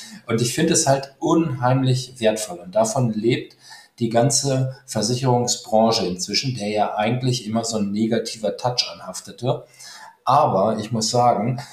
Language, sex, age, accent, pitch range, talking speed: German, male, 40-59, German, 110-125 Hz, 140 wpm